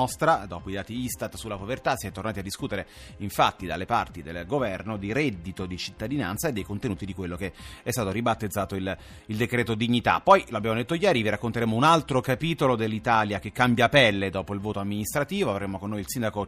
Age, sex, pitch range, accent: 30-49, male, 100-125 Hz, native